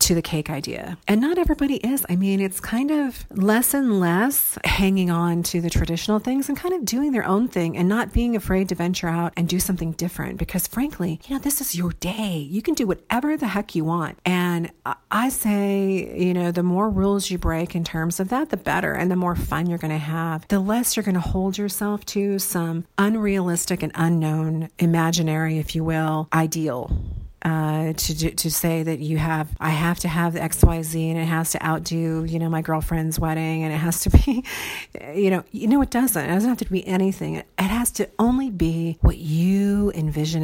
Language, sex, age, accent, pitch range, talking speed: English, female, 40-59, American, 160-205 Hz, 215 wpm